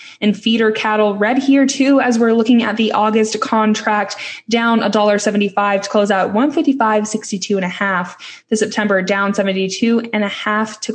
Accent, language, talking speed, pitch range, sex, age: American, English, 150 wpm, 200-240 Hz, female, 10-29